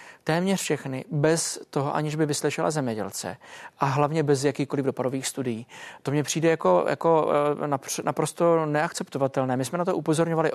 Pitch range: 145-160 Hz